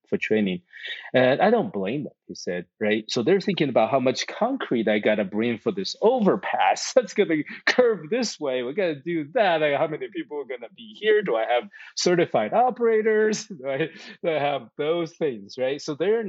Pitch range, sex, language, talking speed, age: 115-170 Hz, male, English, 215 wpm, 30-49